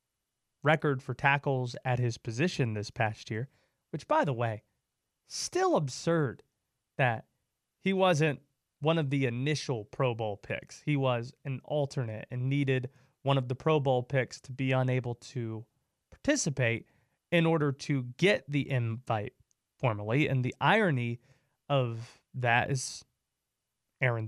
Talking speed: 140 wpm